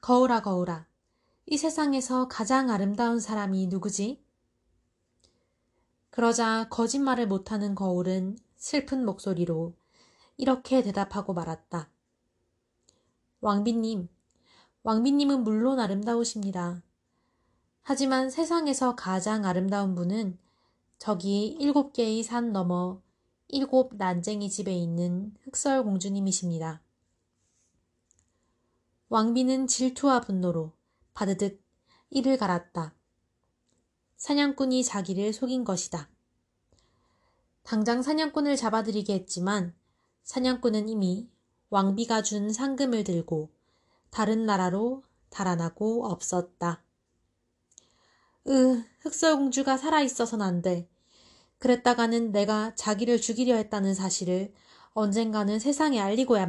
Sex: female